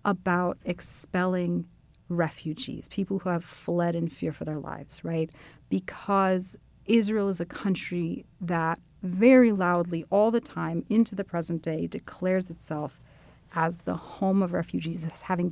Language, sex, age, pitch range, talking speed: English, female, 40-59, 165-190 Hz, 145 wpm